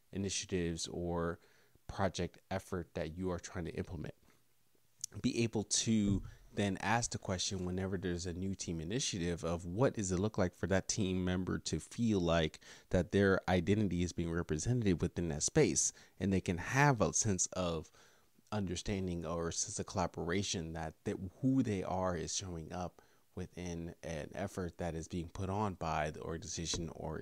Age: 30-49